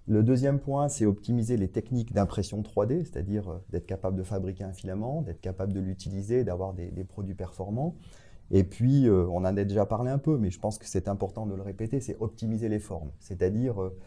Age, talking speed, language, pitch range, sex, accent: 30-49, 205 wpm, French, 95-120 Hz, male, French